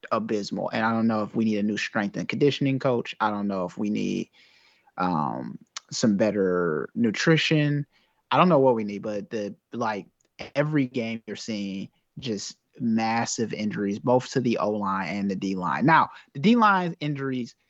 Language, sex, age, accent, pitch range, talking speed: English, male, 30-49, American, 110-140 Hz, 175 wpm